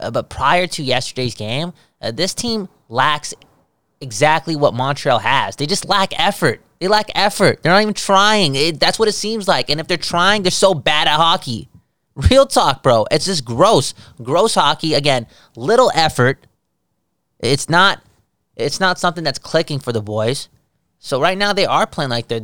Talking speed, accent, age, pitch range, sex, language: 185 wpm, American, 20-39, 115-155 Hz, male, English